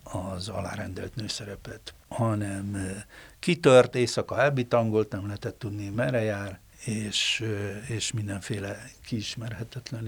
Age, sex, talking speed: 60-79, male, 95 wpm